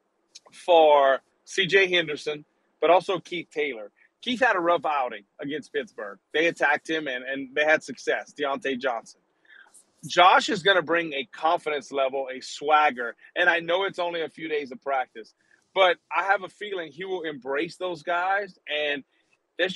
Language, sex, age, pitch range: English, male, 30-49, 150-180 Hz